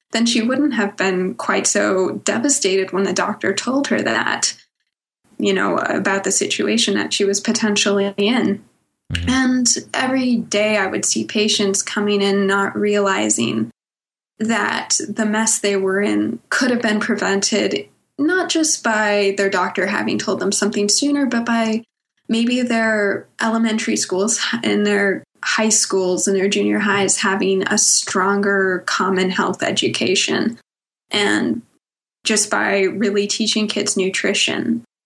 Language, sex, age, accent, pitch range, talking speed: English, female, 10-29, American, 195-225 Hz, 140 wpm